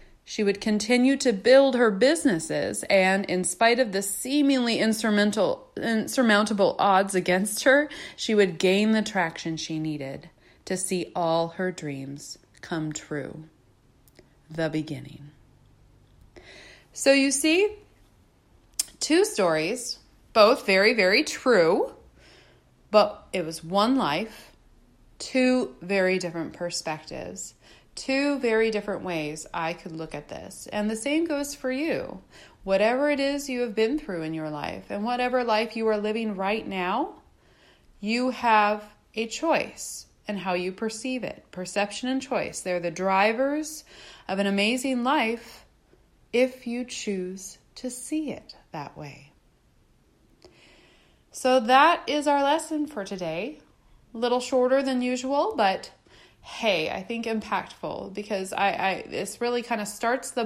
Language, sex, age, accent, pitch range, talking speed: English, female, 30-49, American, 180-250 Hz, 135 wpm